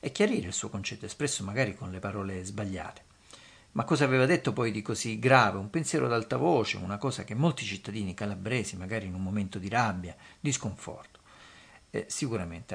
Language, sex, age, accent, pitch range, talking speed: Italian, male, 50-69, native, 100-130 Hz, 185 wpm